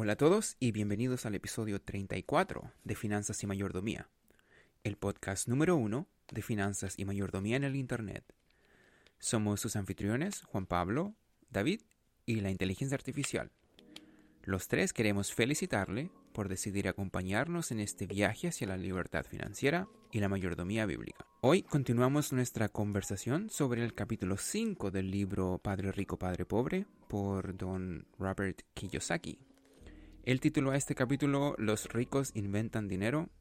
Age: 30-49